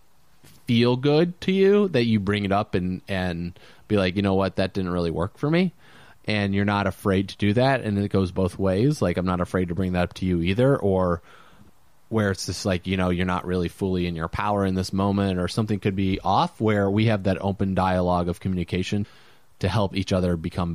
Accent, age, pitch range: American, 30-49, 90-110 Hz